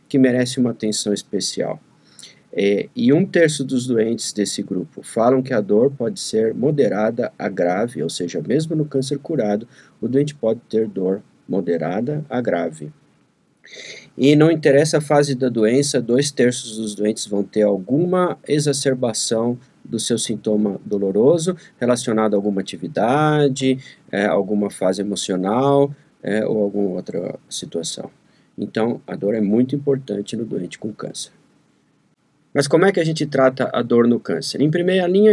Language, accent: Portuguese, Brazilian